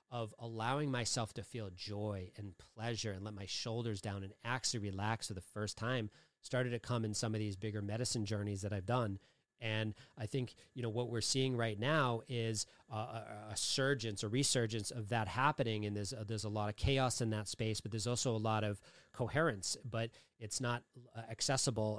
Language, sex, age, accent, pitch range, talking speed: English, male, 30-49, American, 105-125 Hz, 205 wpm